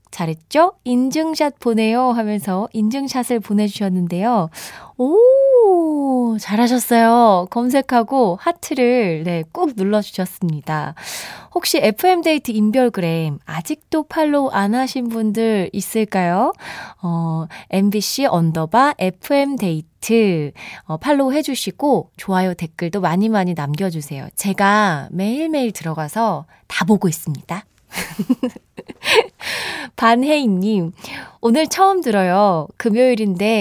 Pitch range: 185-260 Hz